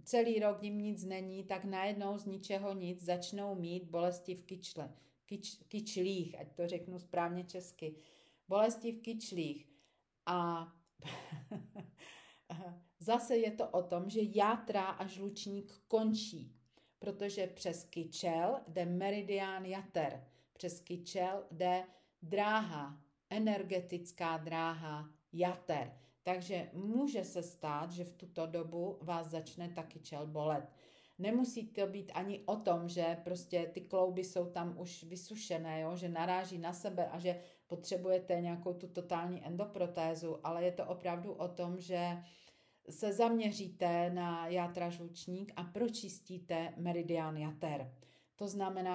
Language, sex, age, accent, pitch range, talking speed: Czech, female, 40-59, native, 170-190 Hz, 130 wpm